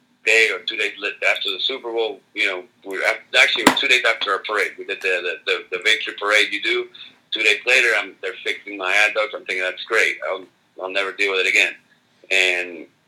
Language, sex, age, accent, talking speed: English, male, 40-59, American, 220 wpm